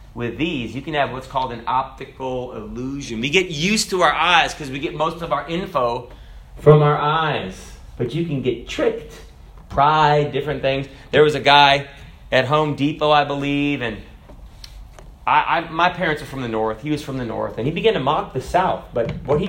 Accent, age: American, 30-49